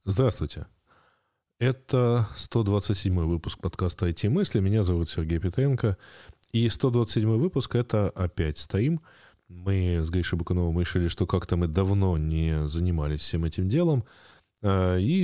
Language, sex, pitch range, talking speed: Russian, male, 80-105 Hz, 120 wpm